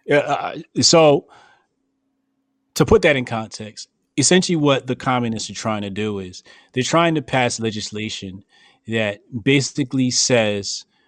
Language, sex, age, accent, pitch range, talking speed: English, male, 30-49, American, 100-135 Hz, 135 wpm